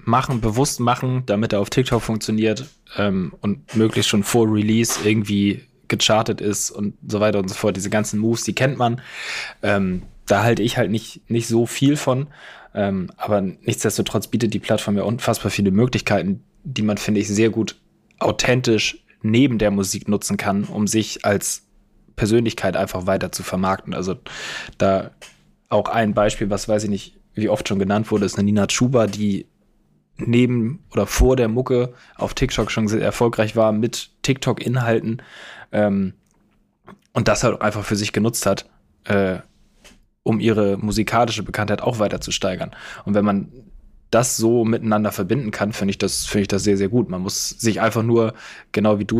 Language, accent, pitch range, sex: German, German, 100-115 Hz, male